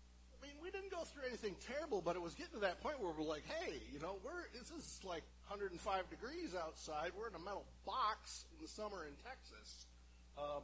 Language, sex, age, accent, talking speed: English, male, 50-69, American, 225 wpm